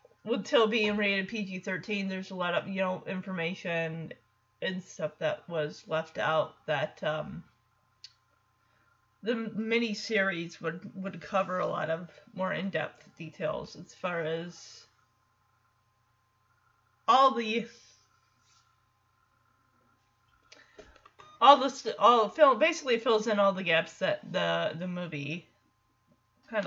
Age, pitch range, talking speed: 30-49, 165-265 Hz, 120 wpm